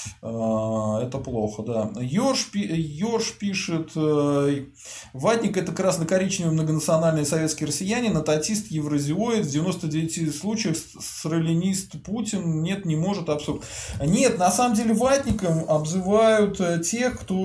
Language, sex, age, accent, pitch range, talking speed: Russian, male, 20-39, native, 145-195 Hz, 120 wpm